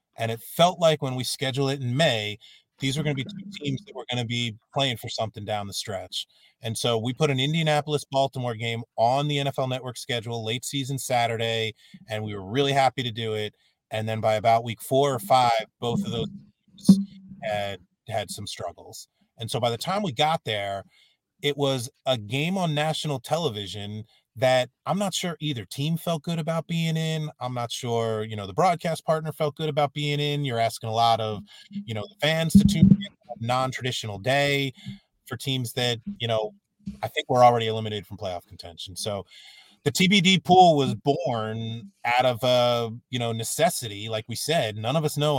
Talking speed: 205 wpm